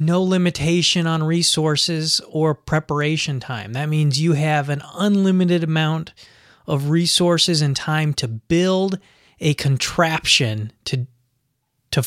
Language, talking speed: English, 120 wpm